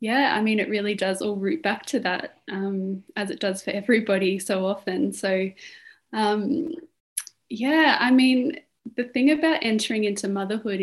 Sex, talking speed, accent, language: female, 165 wpm, Australian, English